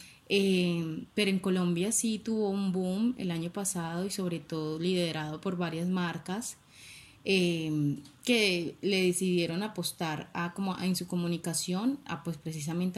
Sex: female